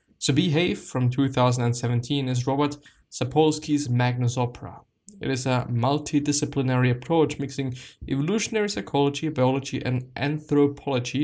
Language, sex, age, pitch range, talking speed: English, male, 20-39, 125-145 Hz, 105 wpm